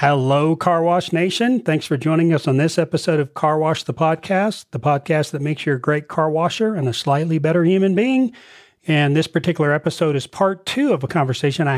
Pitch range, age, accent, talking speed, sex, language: 130-170 Hz, 40-59, American, 215 wpm, male, English